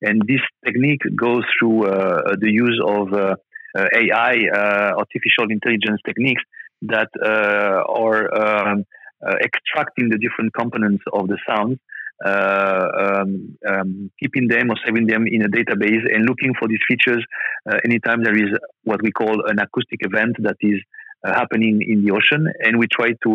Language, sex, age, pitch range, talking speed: English, male, 40-59, 105-115 Hz, 165 wpm